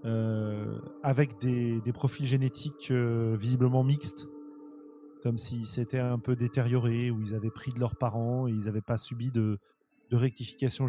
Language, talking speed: French, 165 wpm